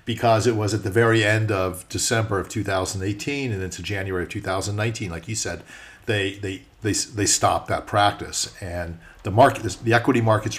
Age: 50-69